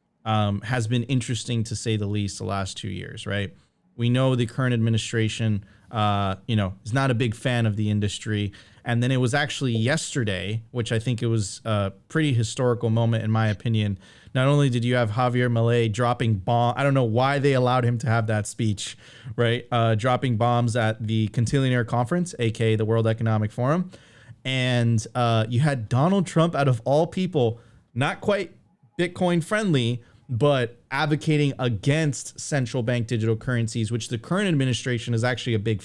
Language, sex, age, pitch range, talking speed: English, male, 30-49, 115-140 Hz, 180 wpm